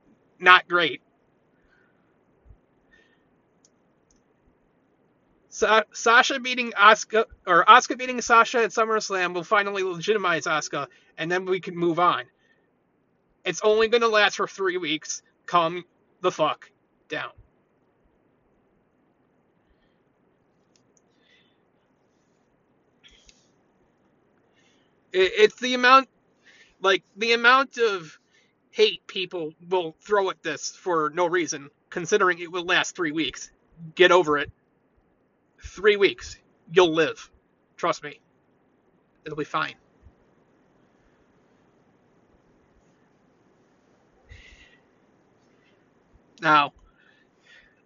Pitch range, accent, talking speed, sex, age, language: 175-235 Hz, American, 85 wpm, male, 30-49, English